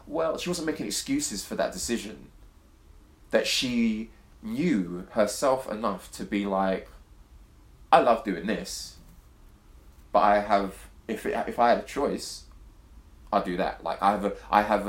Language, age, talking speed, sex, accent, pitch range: English, 20-39, 155 wpm, male, British, 90-115 Hz